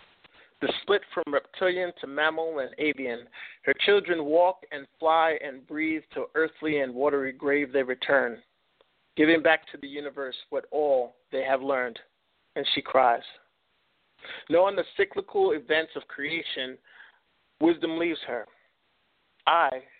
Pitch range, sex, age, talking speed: 140-170 Hz, male, 50-69, 135 wpm